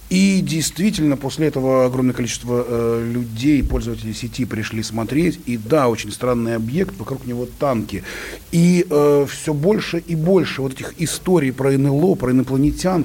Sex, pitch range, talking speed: male, 125-160 Hz, 150 wpm